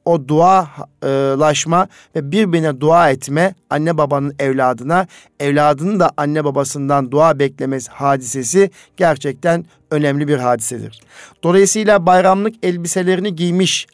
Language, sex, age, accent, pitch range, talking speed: Turkish, male, 50-69, native, 140-175 Hz, 110 wpm